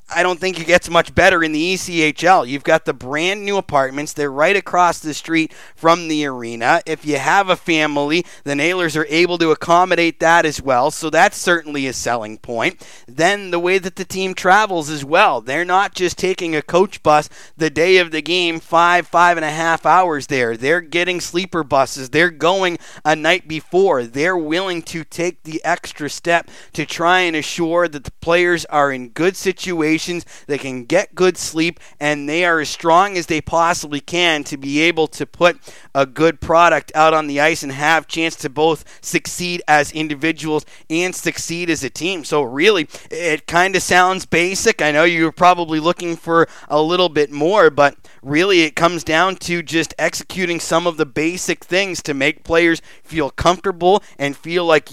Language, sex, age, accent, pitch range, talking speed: English, male, 30-49, American, 150-175 Hz, 195 wpm